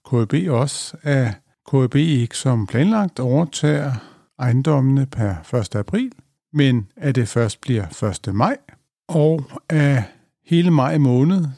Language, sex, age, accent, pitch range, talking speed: Danish, male, 50-69, native, 120-155 Hz, 125 wpm